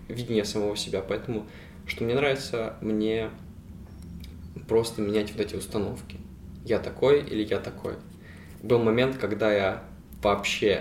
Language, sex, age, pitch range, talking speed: Russian, male, 20-39, 95-110 Hz, 130 wpm